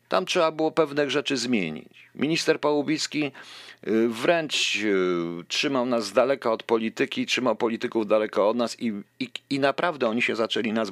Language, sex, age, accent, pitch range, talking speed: Polish, male, 50-69, native, 110-140 Hz, 155 wpm